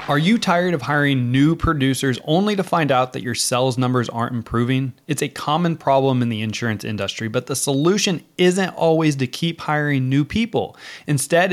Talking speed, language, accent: 185 wpm, English, American